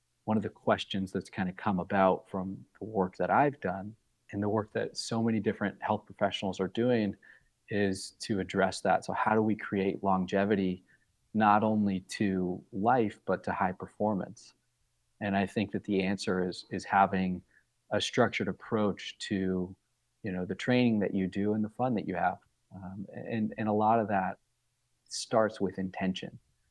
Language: English